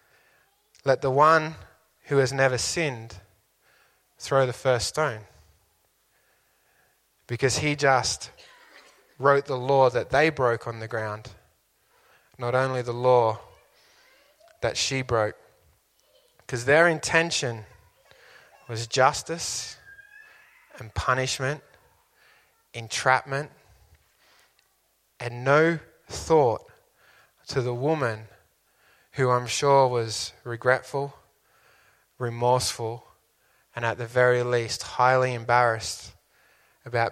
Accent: Australian